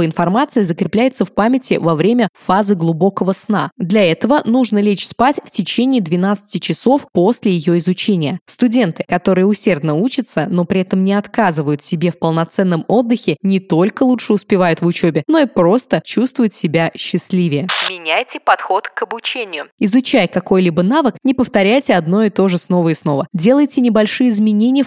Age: 20-39